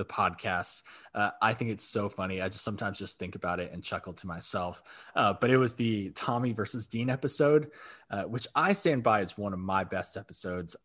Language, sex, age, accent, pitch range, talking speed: English, male, 20-39, American, 105-145 Hz, 215 wpm